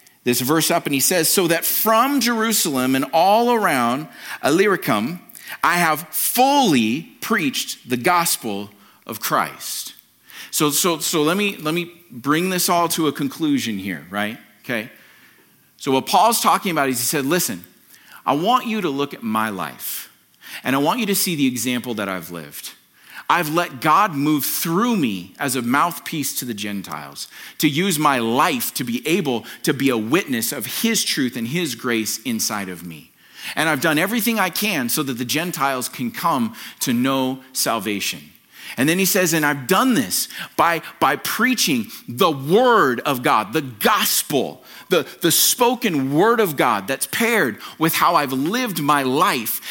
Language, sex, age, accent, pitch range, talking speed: English, male, 40-59, American, 140-220 Hz, 175 wpm